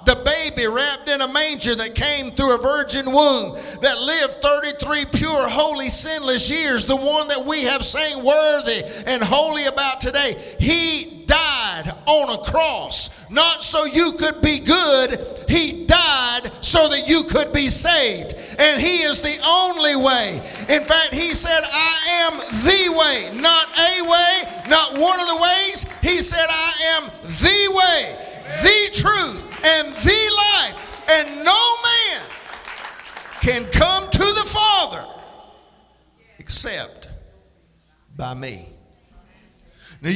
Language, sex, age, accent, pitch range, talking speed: English, male, 50-69, American, 220-320 Hz, 140 wpm